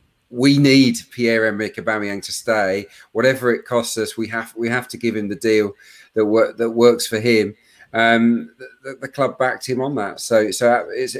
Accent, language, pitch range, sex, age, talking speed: British, English, 115-140 Hz, male, 40-59, 195 wpm